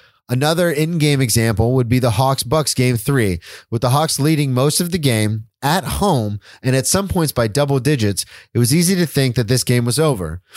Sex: male